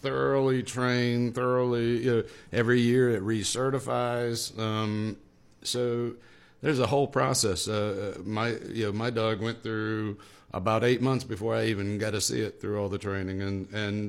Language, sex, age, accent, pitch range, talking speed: English, male, 50-69, American, 105-125 Hz, 165 wpm